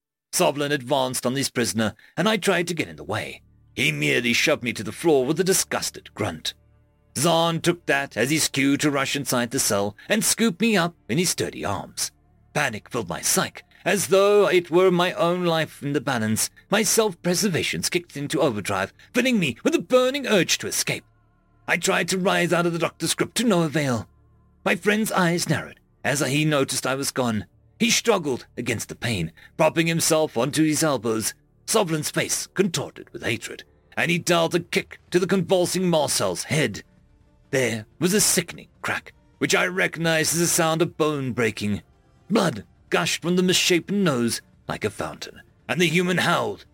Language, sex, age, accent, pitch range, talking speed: English, male, 40-59, British, 135-195 Hz, 185 wpm